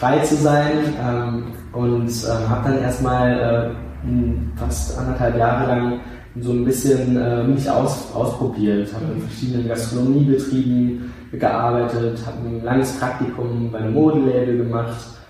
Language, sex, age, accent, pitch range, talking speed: German, male, 20-39, German, 110-125 Hz, 135 wpm